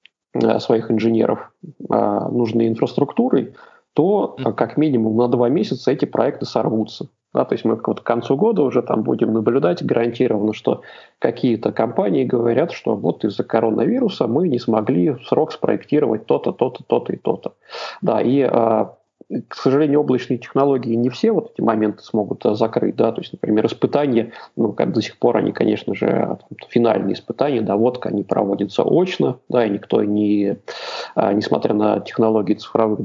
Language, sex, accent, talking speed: Russian, male, native, 155 wpm